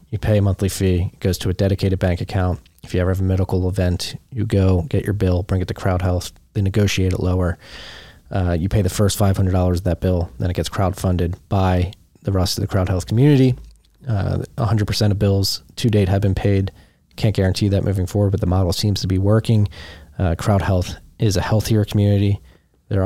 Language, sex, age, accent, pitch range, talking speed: English, male, 20-39, American, 90-105 Hz, 220 wpm